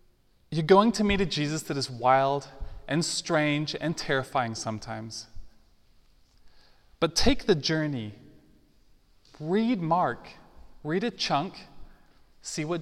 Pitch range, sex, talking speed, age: 115-175 Hz, male, 115 wpm, 20-39